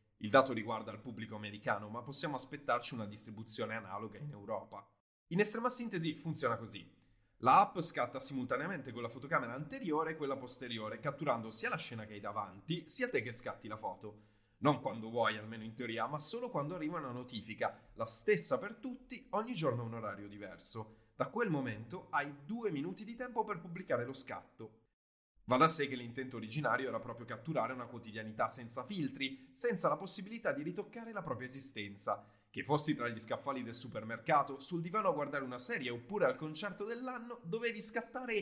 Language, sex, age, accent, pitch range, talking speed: Italian, male, 20-39, native, 110-170 Hz, 185 wpm